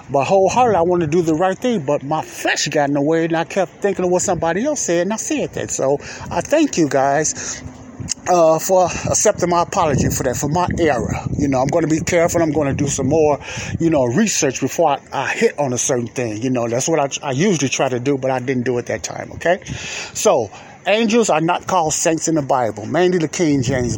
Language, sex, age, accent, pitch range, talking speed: English, male, 30-49, American, 135-180 Hz, 250 wpm